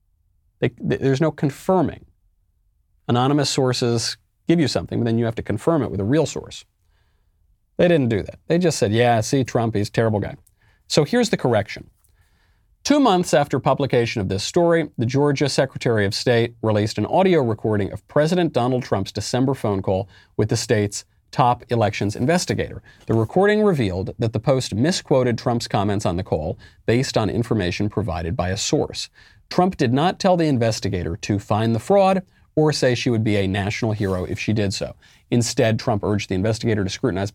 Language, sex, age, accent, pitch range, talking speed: English, male, 40-59, American, 100-135 Hz, 185 wpm